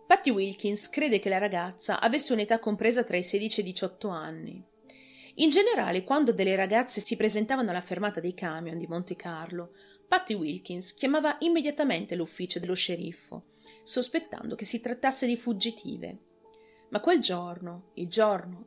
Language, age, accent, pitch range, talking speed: Italian, 30-49, native, 180-265 Hz, 155 wpm